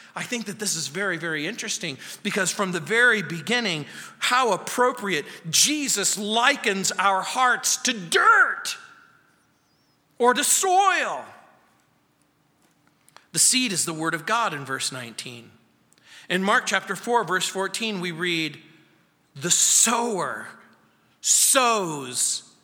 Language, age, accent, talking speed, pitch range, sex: English, 40-59, American, 120 wpm, 175-245 Hz, male